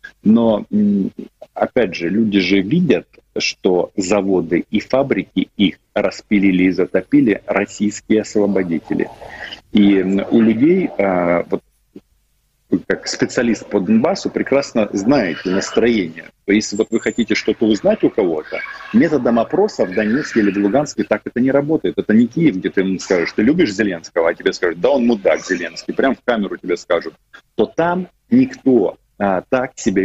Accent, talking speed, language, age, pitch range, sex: native, 150 wpm, Russian, 40-59, 95-120 Hz, male